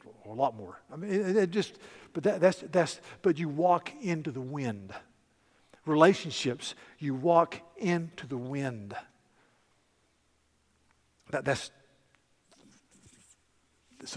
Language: English